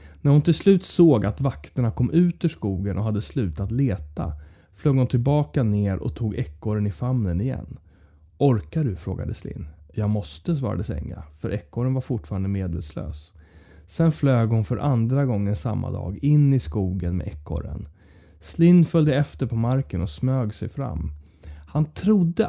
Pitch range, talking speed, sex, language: 90-135 Hz, 165 wpm, male, English